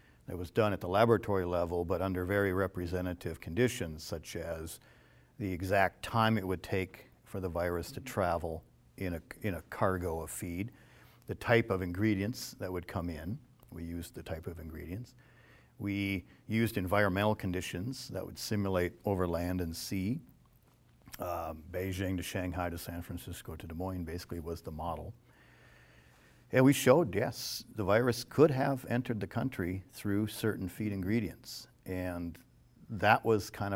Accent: American